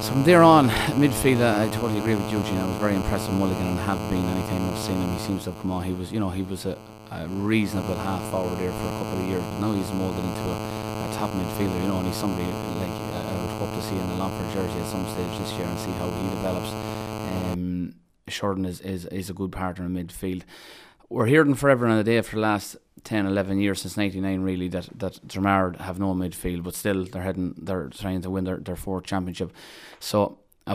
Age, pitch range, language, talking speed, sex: 20-39, 90-105 Hz, English, 245 wpm, male